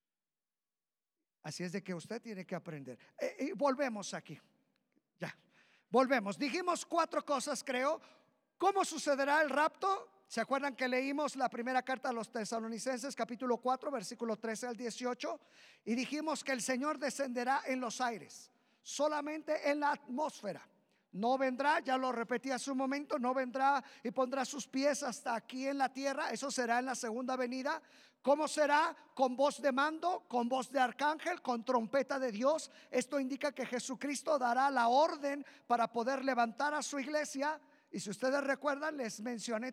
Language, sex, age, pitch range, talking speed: Spanish, male, 50-69, 240-285 Hz, 165 wpm